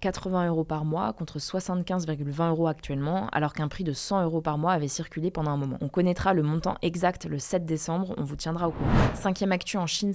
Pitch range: 160-190 Hz